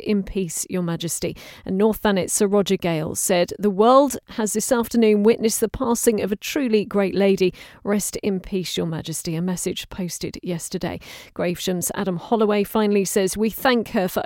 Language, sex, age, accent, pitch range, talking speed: English, female, 40-59, British, 195-235 Hz, 175 wpm